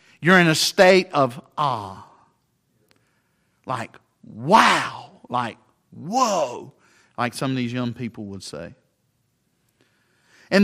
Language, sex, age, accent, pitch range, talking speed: English, male, 50-69, American, 155-250 Hz, 105 wpm